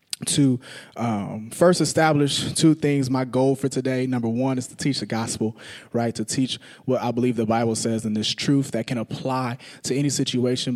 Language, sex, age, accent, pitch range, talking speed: English, male, 20-39, American, 120-145 Hz, 195 wpm